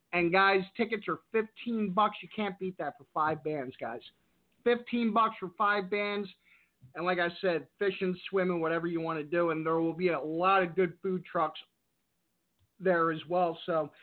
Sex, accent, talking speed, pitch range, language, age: male, American, 190 wpm, 170-205 Hz, English, 50-69